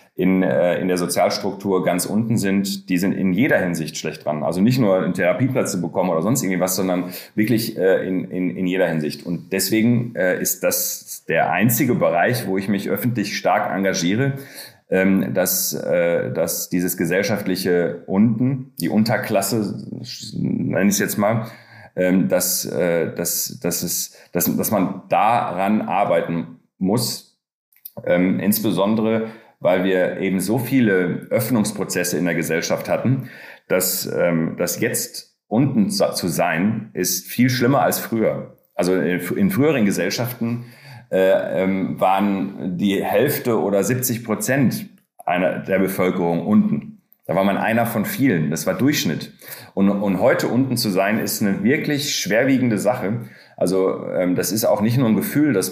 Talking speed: 150 wpm